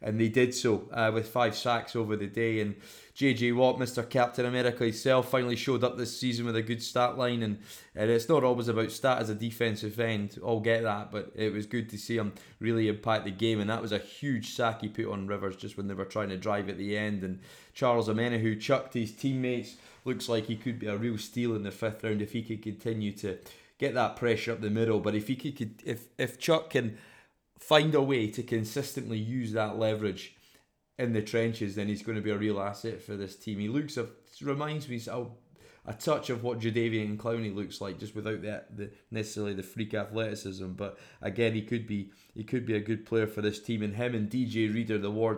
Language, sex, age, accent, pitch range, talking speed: English, male, 20-39, British, 105-120 Hz, 235 wpm